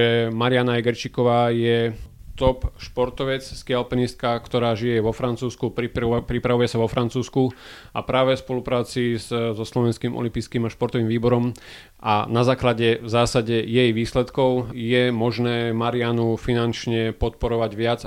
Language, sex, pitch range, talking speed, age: Slovak, male, 115-125 Hz, 135 wpm, 30-49